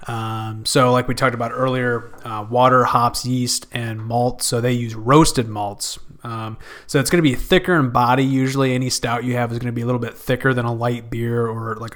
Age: 20-39